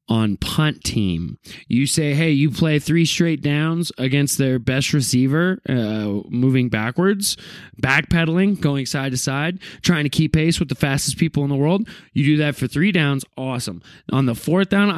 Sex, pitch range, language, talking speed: male, 120-165 Hz, English, 180 wpm